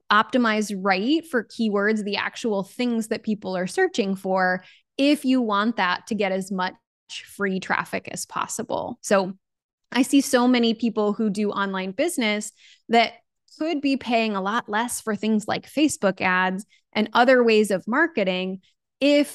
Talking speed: 160 wpm